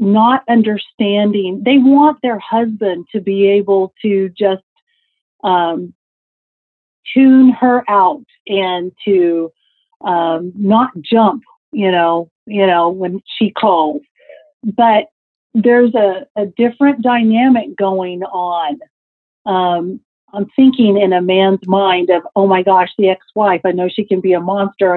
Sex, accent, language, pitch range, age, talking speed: female, American, English, 190-255 Hz, 50-69, 130 wpm